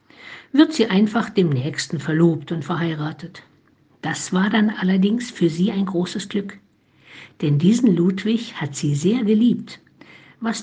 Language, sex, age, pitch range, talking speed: German, female, 60-79, 175-220 Hz, 140 wpm